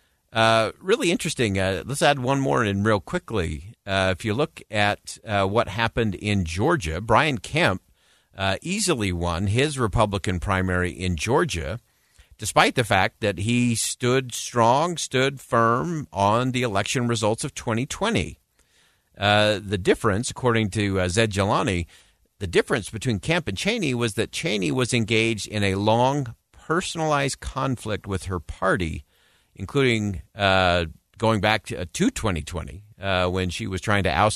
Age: 50-69